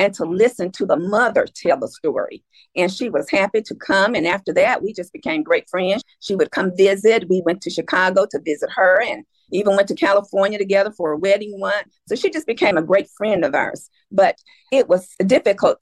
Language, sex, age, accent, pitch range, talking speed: English, female, 50-69, American, 190-260 Hz, 215 wpm